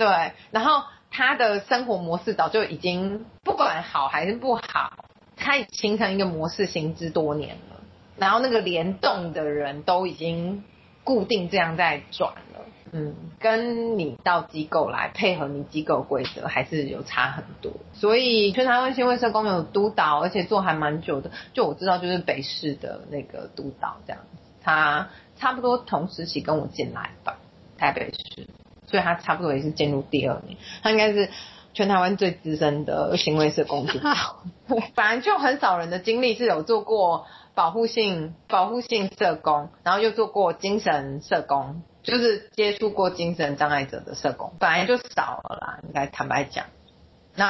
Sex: female